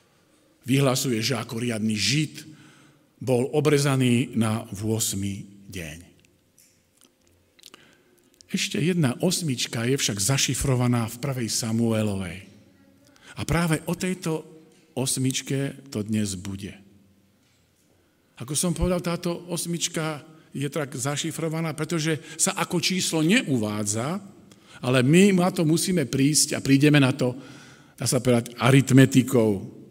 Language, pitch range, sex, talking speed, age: Slovak, 120-170 Hz, male, 110 wpm, 50-69